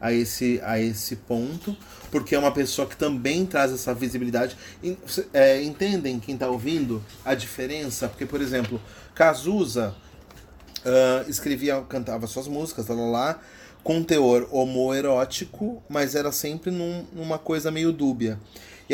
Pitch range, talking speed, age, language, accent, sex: 120-145 Hz, 135 wpm, 30-49, Portuguese, Brazilian, male